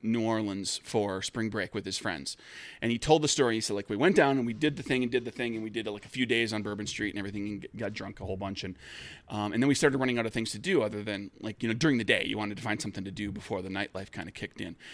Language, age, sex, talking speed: English, 30-49, male, 320 wpm